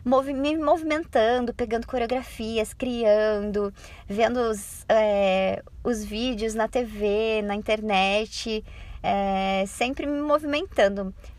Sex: male